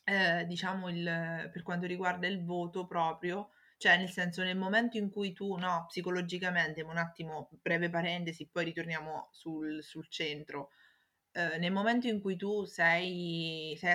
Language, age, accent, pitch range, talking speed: Italian, 20-39, native, 165-195 Hz, 155 wpm